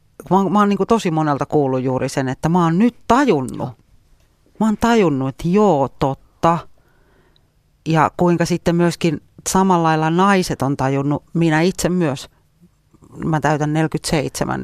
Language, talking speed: Finnish, 145 wpm